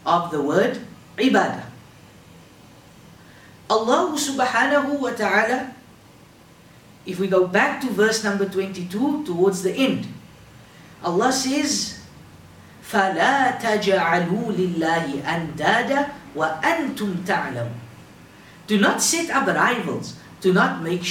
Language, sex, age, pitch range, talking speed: English, female, 50-69, 180-240 Hz, 80 wpm